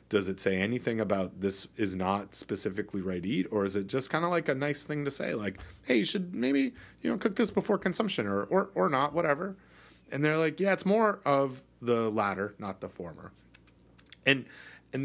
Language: English